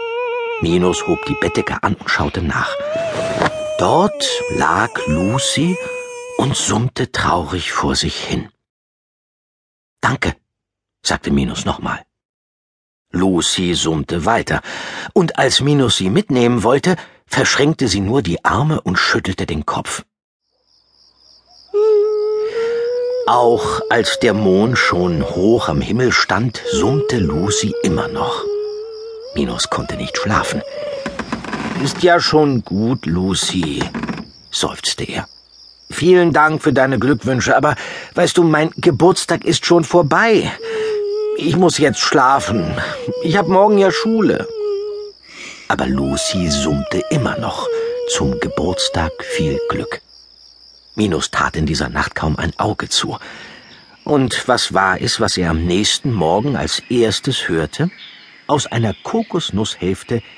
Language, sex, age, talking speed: German, male, 60-79, 115 wpm